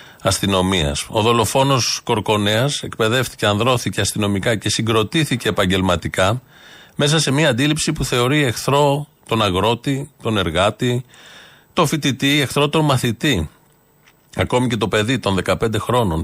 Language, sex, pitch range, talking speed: Greek, male, 100-145 Hz, 120 wpm